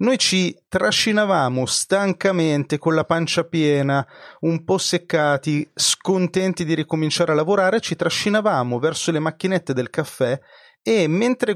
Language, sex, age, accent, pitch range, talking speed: Italian, male, 30-49, native, 140-190 Hz, 130 wpm